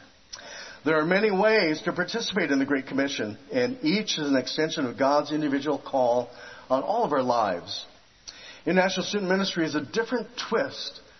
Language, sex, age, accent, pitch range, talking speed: English, male, 50-69, American, 145-190 Hz, 165 wpm